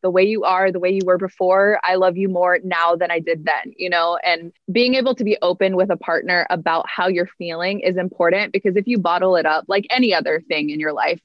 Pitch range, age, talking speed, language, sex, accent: 165-195 Hz, 20-39, 255 wpm, English, female, American